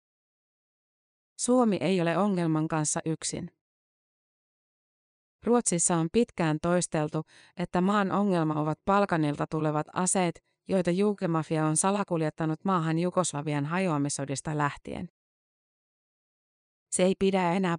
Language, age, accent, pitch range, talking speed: Finnish, 30-49, native, 155-185 Hz, 100 wpm